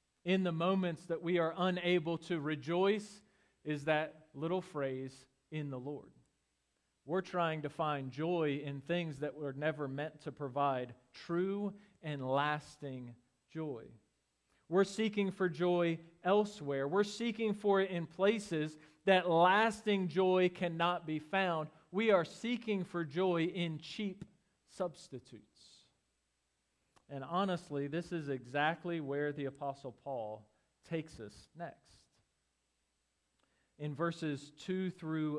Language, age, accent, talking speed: English, 40-59, American, 125 wpm